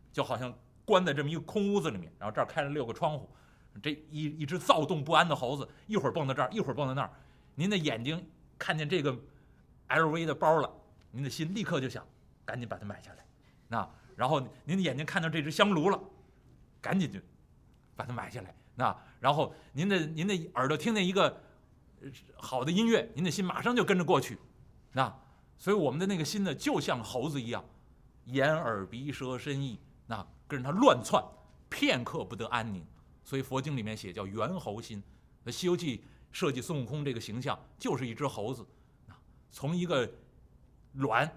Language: Chinese